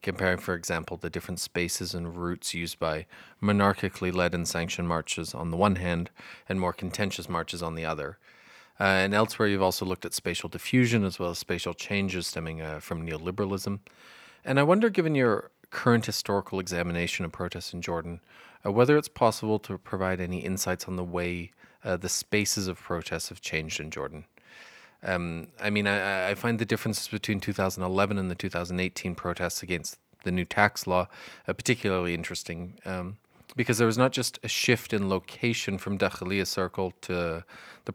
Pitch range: 90-105 Hz